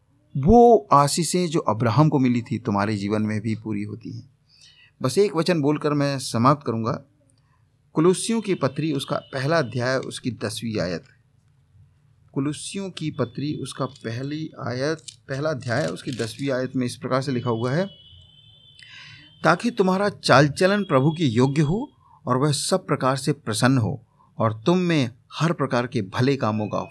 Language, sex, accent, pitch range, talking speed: Hindi, male, native, 120-145 Hz, 160 wpm